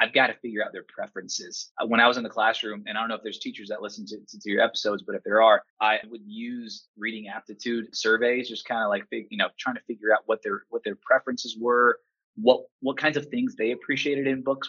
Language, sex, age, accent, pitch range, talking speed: English, male, 20-39, American, 110-140 Hz, 255 wpm